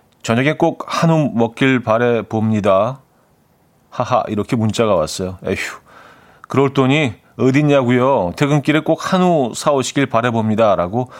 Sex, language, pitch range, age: male, Korean, 105-145 Hz, 40-59